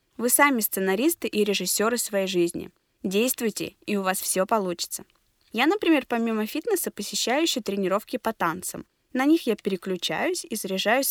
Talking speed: 150 wpm